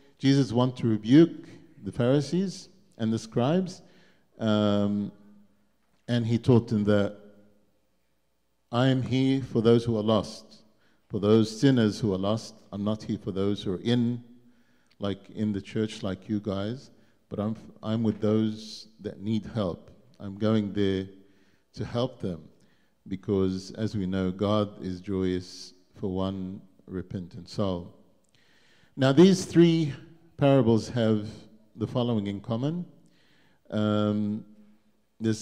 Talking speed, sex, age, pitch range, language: 135 wpm, male, 50-69, 100-130 Hz, English